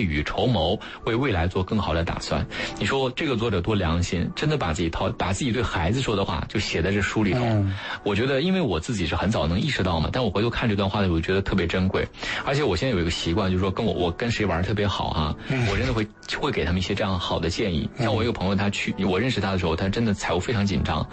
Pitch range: 90-110 Hz